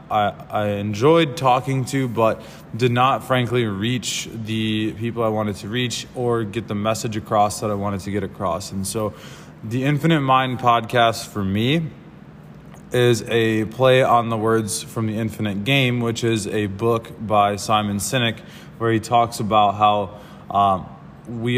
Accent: American